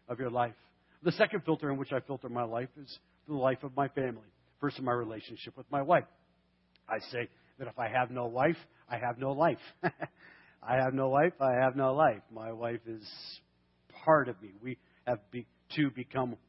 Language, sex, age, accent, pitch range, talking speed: English, male, 50-69, American, 110-135 Hz, 200 wpm